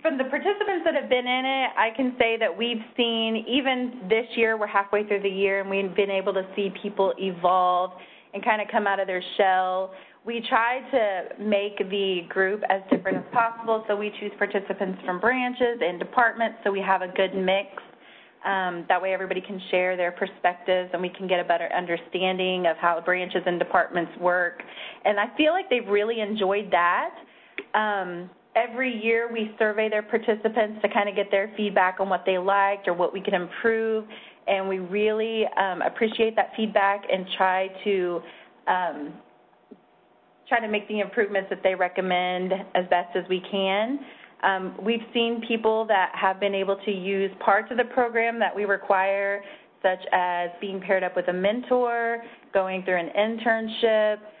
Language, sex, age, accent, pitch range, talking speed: English, female, 30-49, American, 185-230 Hz, 180 wpm